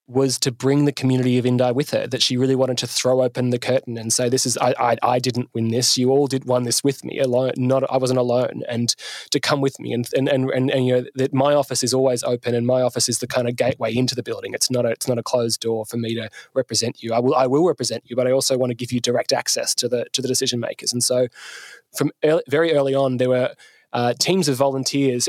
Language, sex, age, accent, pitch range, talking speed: English, male, 20-39, Australian, 120-130 Hz, 275 wpm